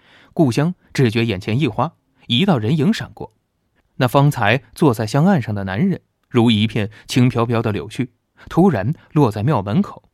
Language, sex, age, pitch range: Chinese, male, 20-39, 110-145 Hz